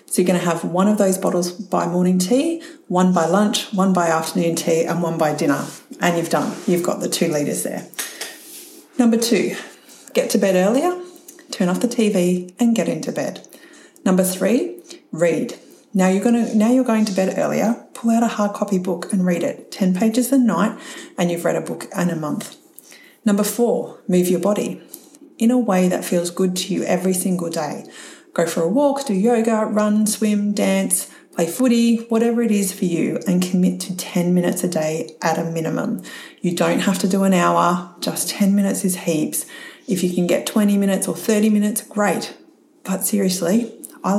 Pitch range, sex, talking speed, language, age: 180-235 Hz, female, 200 wpm, English, 40-59